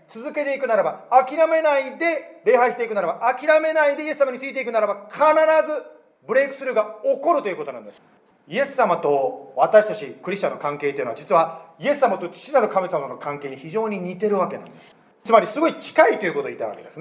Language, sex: Japanese, male